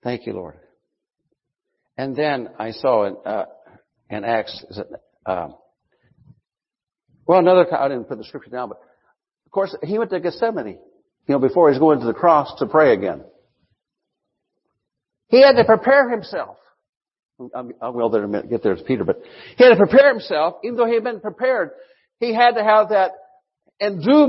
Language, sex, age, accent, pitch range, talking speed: English, male, 60-79, American, 180-245 Hz, 180 wpm